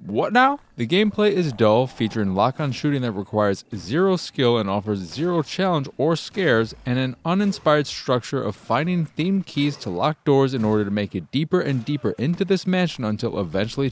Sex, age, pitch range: male, 30-49, 105-150 Hz